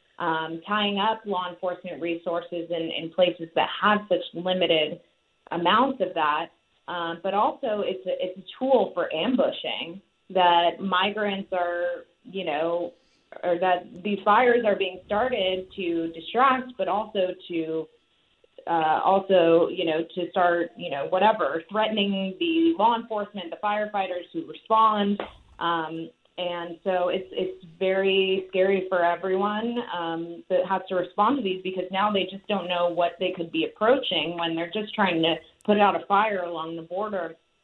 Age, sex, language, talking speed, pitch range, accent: 20-39, female, English, 160 wpm, 170-205 Hz, American